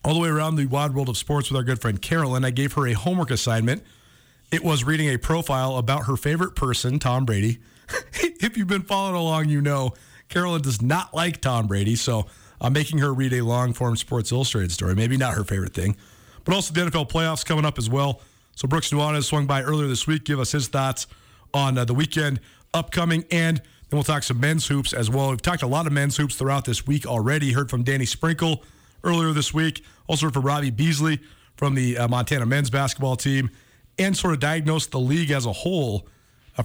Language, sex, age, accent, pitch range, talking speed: English, male, 40-59, American, 125-160 Hz, 220 wpm